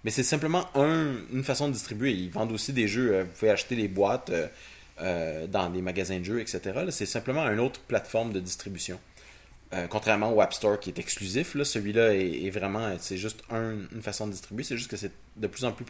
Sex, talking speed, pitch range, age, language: male, 215 wpm, 100-125 Hz, 30-49, French